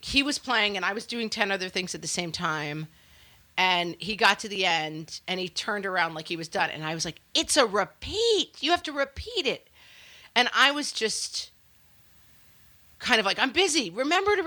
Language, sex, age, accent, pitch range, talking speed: English, female, 40-59, American, 170-245 Hz, 210 wpm